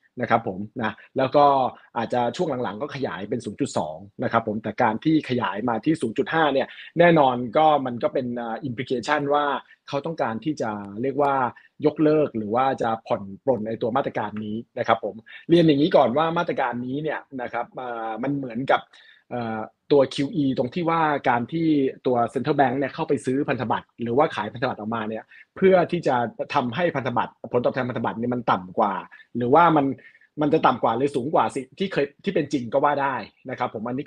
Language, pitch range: Thai, 120-155 Hz